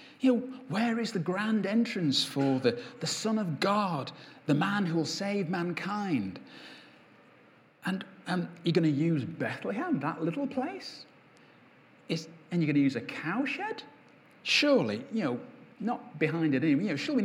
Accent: British